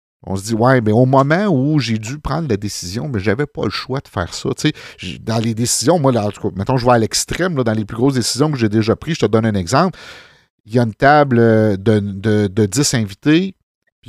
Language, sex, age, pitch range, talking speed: French, male, 50-69, 105-135 Hz, 260 wpm